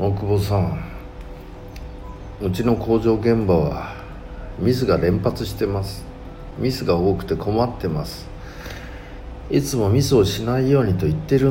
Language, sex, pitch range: Japanese, male, 90-110 Hz